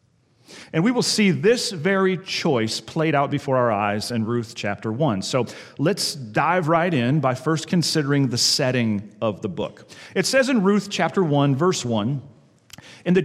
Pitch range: 130-180 Hz